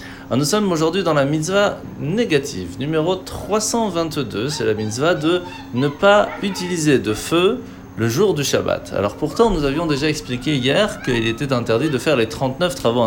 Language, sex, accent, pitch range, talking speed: French, male, French, 115-165 Hz, 170 wpm